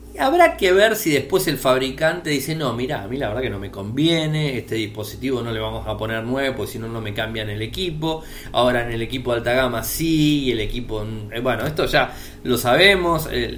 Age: 20-39